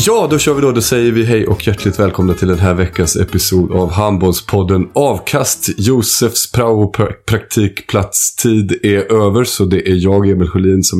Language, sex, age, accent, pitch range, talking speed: Swedish, male, 30-49, native, 90-105 Hz, 180 wpm